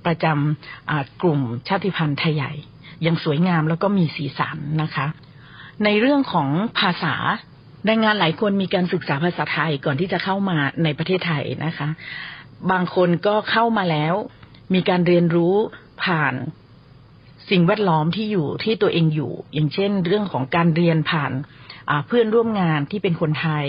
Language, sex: Thai, female